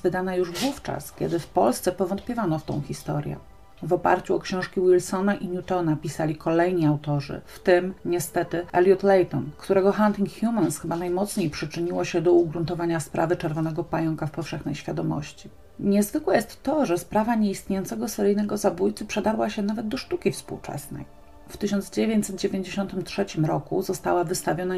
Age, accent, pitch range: 40-59, native, 165-195 Hz